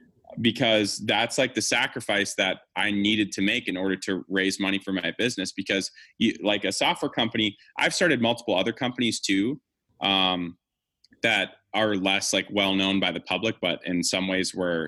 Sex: male